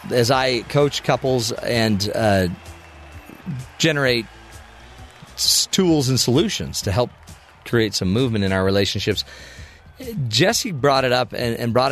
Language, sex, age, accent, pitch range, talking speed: English, male, 40-59, American, 100-135 Hz, 130 wpm